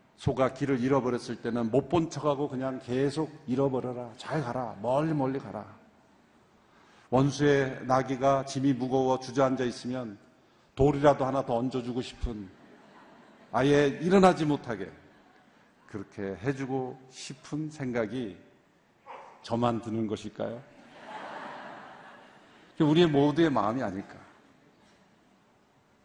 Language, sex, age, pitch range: Korean, male, 50-69, 120-160 Hz